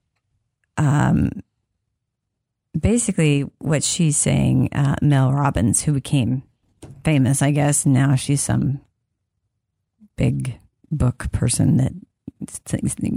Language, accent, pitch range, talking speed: English, American, 120-150 Hz, 95 wpm